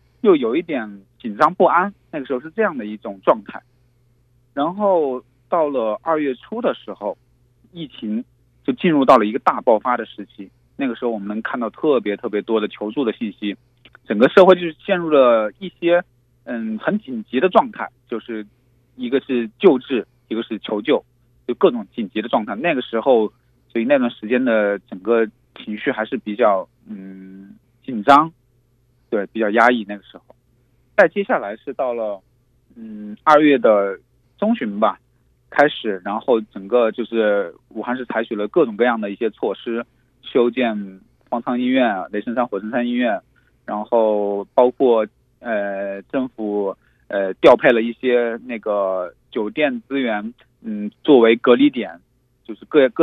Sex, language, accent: male, Chinese, native